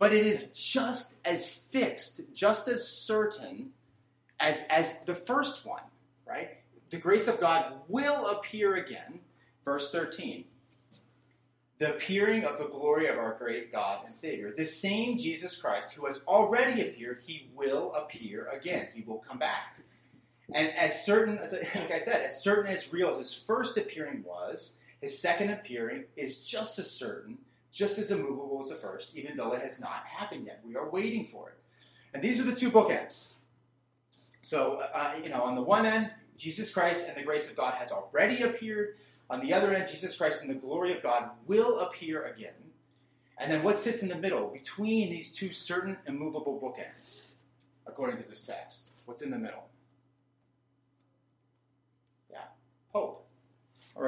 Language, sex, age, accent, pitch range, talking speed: English, male, 30-49, American, 130-210 Hz, 170 wpm